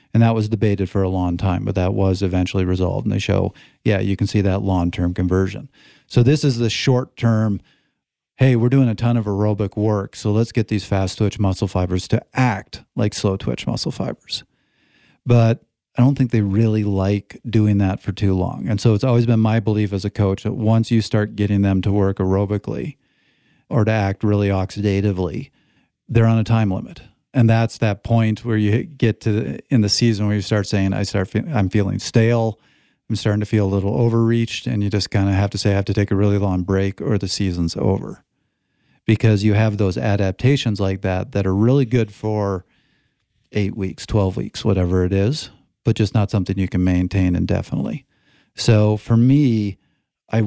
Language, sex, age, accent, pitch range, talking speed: English, male, 40-59, American, 95-115 Hz, 200 wpm